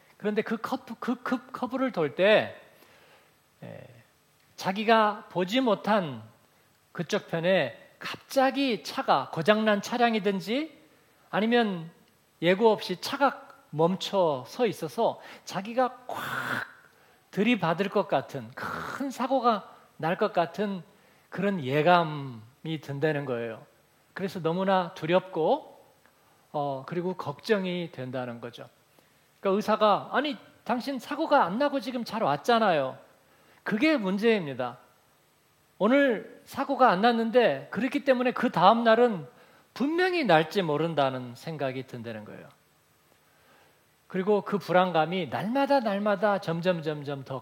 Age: 40-59